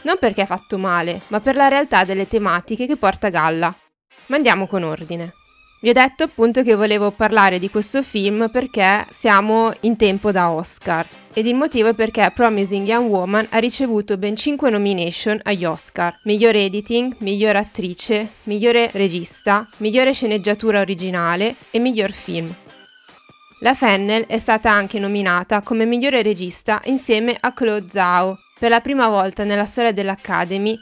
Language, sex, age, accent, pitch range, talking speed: Italian, female, 20-39, native, 195-235 Hz, 160 wpm